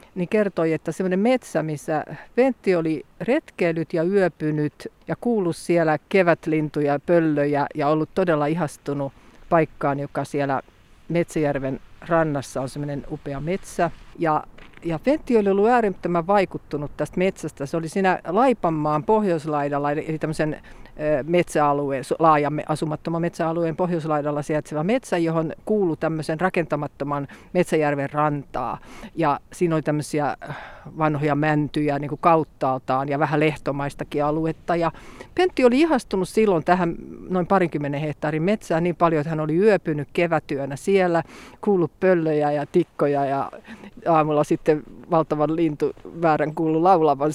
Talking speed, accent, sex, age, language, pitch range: 120 wpm, native, female, 50-69, Finnish, 150-190 Hz